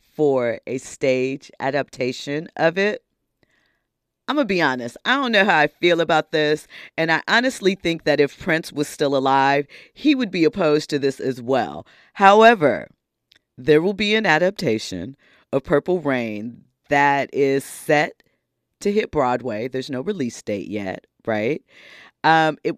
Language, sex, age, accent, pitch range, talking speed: English, female, 40-59, American, 130-170 Hz, 155 wpm